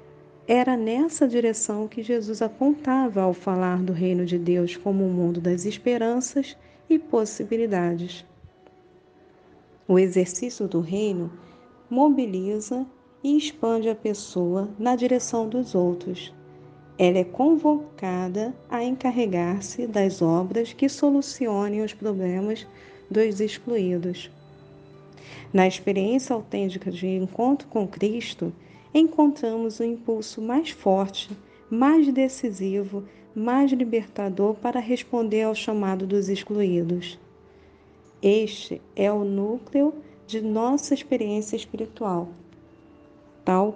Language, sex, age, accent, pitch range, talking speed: Portuguese, female, 40-59, Brazilian, 185-245 Hz, 105 wpm